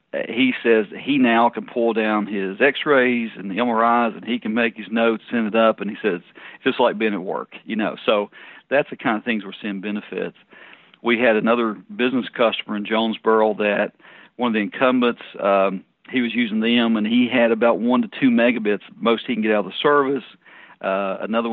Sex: male